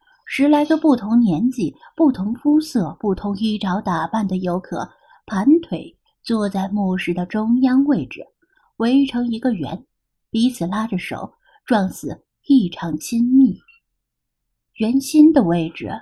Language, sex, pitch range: Chinese, female, 200-290 Hz